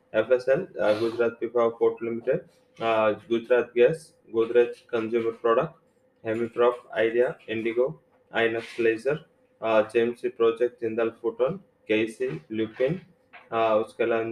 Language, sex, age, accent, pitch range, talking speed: English, male, 20-39, Indian, 115-125 Hz, 95 wpm